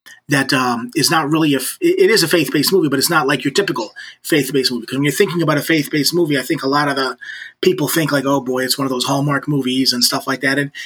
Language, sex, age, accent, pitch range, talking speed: English, male, 30-49, American, 135-160 Hz, 270 wpm